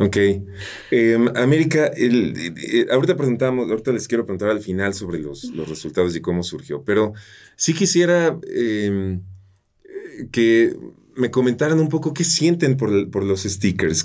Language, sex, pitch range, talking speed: Spanish, male, 100-135 Hz, 155 wpm